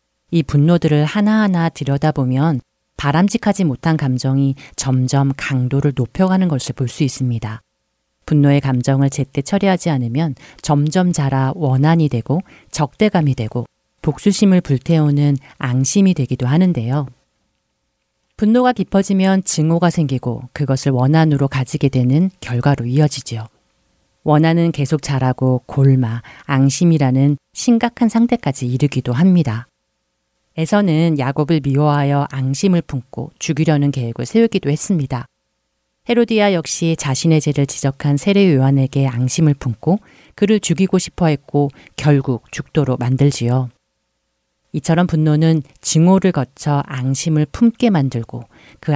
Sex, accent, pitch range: female, native, 130-165 Hz